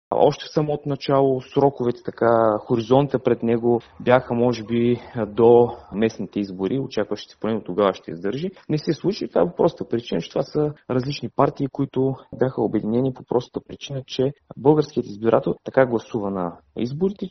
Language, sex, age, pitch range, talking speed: Bulgarian, male, 30-49, 115-150 Hz, 165 wpm